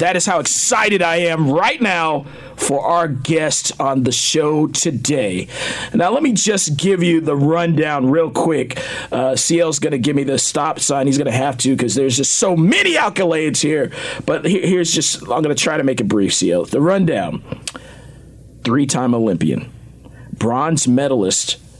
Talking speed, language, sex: 180 wpm, English, male